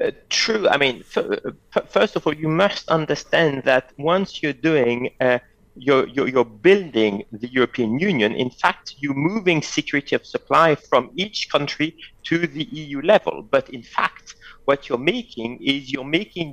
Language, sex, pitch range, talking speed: English, male, 120-160 Hz, 165 wpm